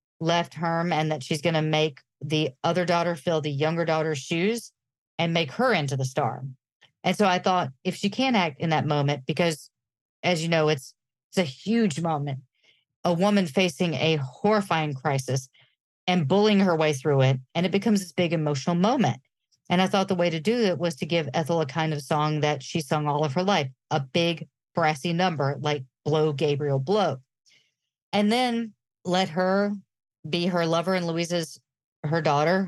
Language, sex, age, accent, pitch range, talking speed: English, female, 40-59, American, 150-180 Hz, 190 wpm